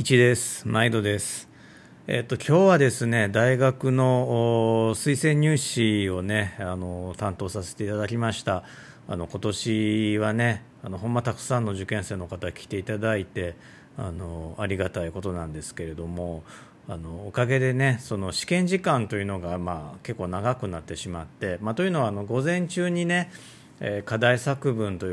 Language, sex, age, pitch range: Japanese, male, 40-59, 90-125 Hz